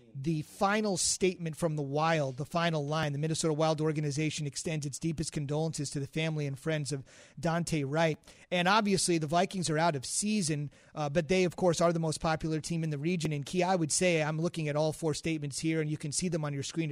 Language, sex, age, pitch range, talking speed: English, male, 30-49, 155-180 Hz, 235 wpm